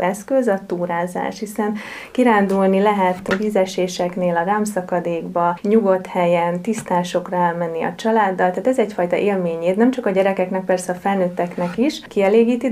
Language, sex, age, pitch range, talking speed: Hungarian, female, 30-49, 180-220 Hz, 130 wpm